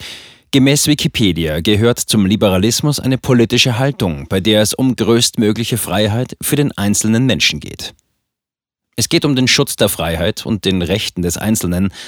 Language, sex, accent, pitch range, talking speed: German, male, German, 95-125 Hz, 155 wpm